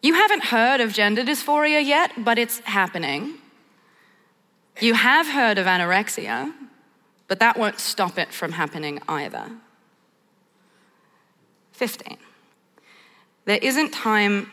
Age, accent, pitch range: 20-39, Australian, 185-230 Hz